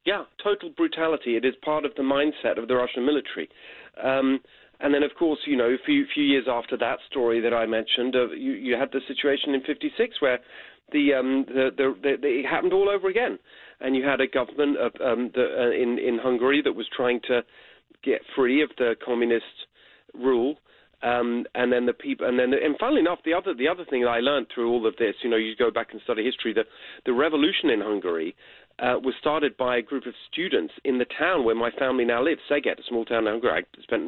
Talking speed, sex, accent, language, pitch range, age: 230 wpm, male, British, English, 120-145 Hz, 40-59